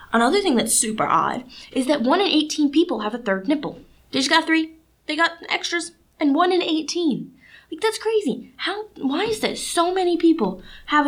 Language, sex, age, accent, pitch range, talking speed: English, female, 10-29, American, 205-290 Hz, 200 wpm